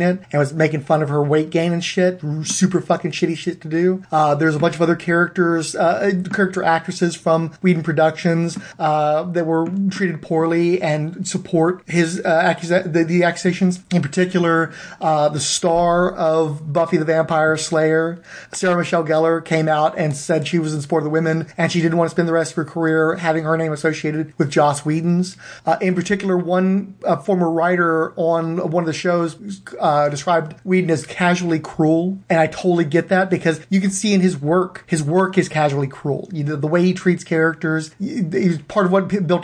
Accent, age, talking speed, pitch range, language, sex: American, 30-49, 200 wpm, 160-180 Hz, English, male